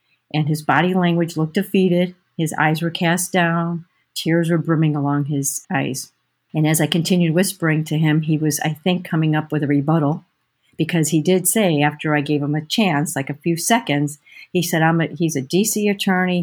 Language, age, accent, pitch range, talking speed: English, 50-69, American, 155-180 Hz, 200 wpm